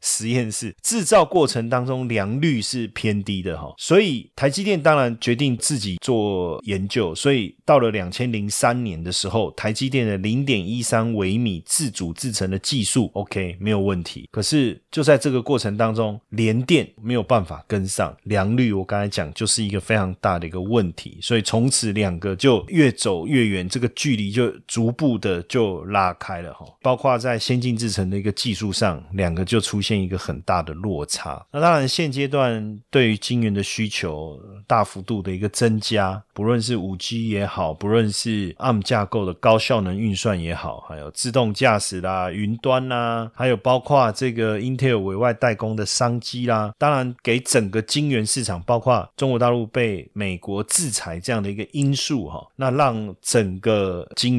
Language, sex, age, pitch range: Chinese, male, 30-49, 100-125 Hz